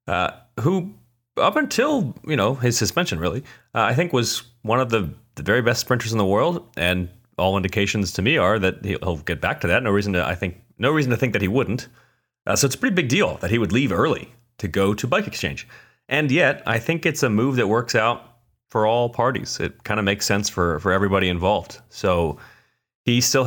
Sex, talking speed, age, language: male, 230 wpm, 30-49, English